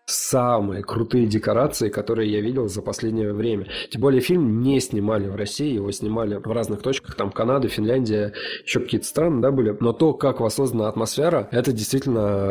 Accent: native